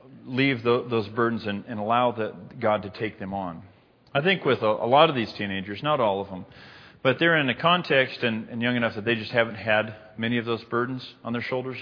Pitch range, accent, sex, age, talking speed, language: 105-125 Hz, American, male, 40-59, 230 wpm, English